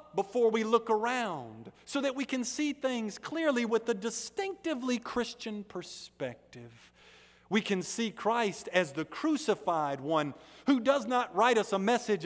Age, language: 50-69, English